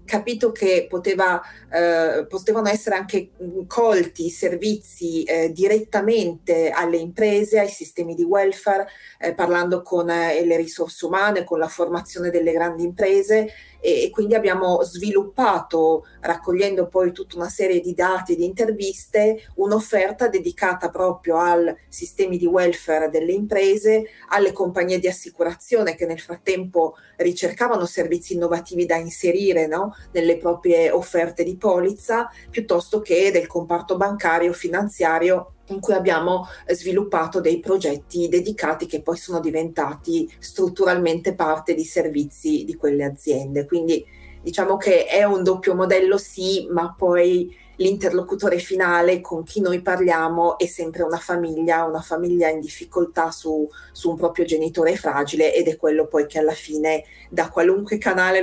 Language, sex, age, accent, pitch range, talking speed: Italian, female, 40-59, native, 165-195 Hz, 140 wpm